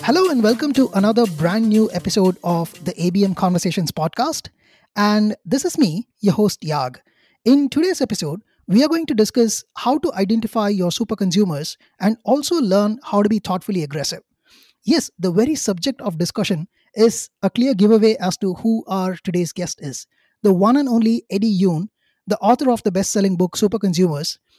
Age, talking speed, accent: 20-39, 180 wpm, Indian